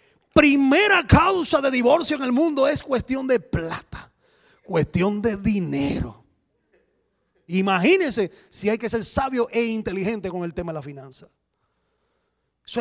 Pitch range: 180-245 Hz